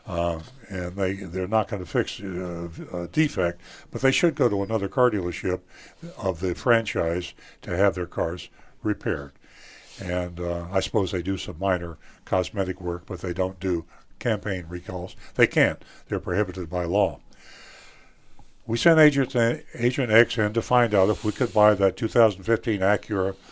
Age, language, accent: 60-79, English, American